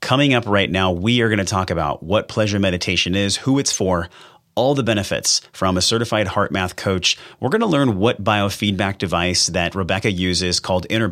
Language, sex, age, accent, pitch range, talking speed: English, male, 30-49, American, 90-115 Hz, 205 wpm